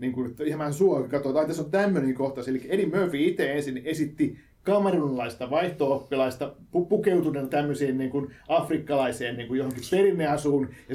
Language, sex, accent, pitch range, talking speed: Finnish, male, native, 135-160 Hz, 120 wpm